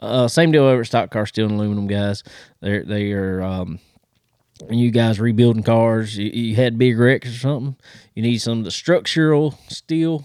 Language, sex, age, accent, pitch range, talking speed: English, male, 20-39, American, 105-135 Hz, 185 wpm